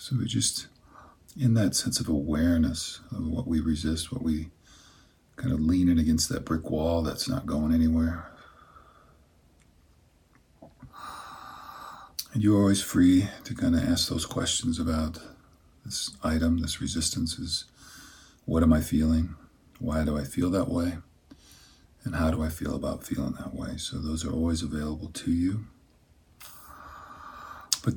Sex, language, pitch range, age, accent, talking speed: male, English, 80-95 Hz, 50-69, American, 150 wpm